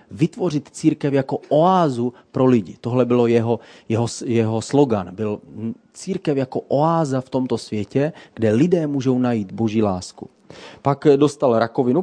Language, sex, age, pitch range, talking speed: Czech, male, 30-49, 110-135 Hz, 140 wpm